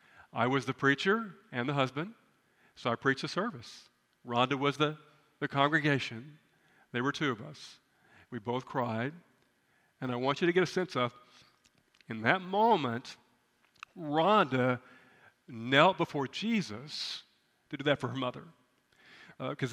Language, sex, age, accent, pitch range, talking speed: English, male, 50-69, American, 130-185 Hz, 145 wpm